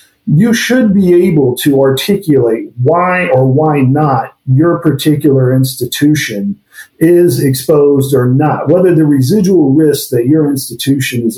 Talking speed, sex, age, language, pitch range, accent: 130 wpm, male, 50-69, English, 130-155 Hz, American